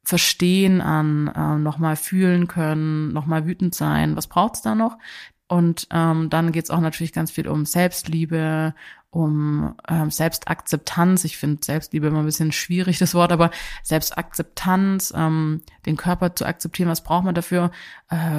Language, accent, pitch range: German, German, 155-175 Hz